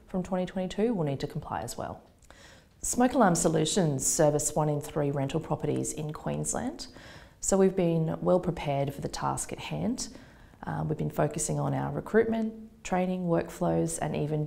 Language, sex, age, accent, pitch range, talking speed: English, female, 30-49, Australian, 140-180 Hz, 165 wpm